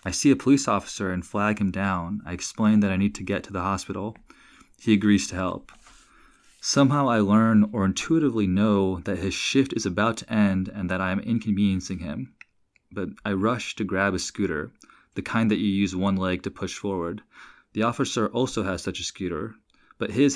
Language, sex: English, male